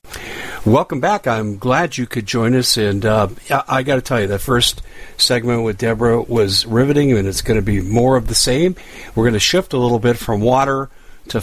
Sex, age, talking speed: male, 50-69, 220 wpm